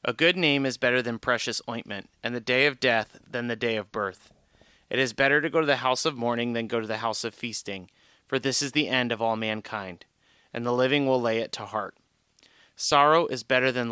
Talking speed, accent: 235 wpm, American